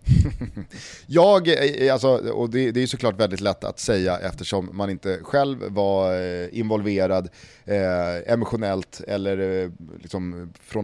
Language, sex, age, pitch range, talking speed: Swedish, male, 30-49, 100-130 Hz, 100 wpm